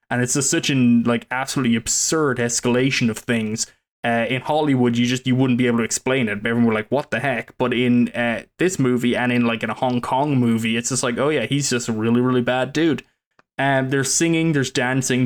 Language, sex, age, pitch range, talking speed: English, male, 20-39, 115-135 Hz, 235 wpm